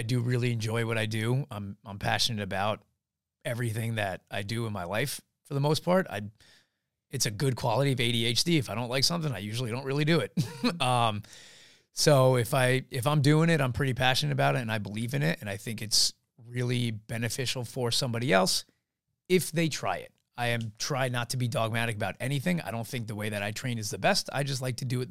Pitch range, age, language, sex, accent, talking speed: 110-135 Hz, 30-49, English, male, American, 230 wpm